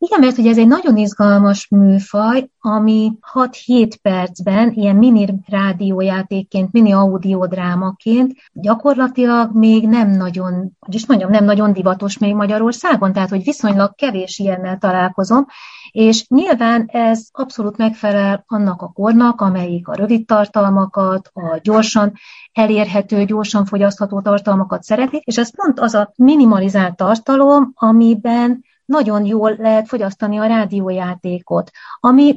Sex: female